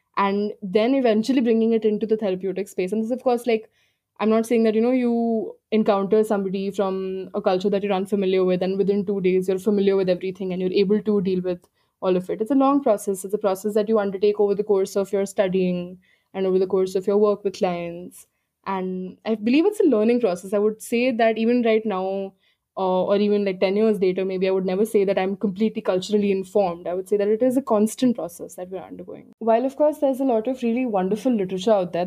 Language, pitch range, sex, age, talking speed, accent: English, 190-235 Hz, female, 20-39, 240 wpm, Indian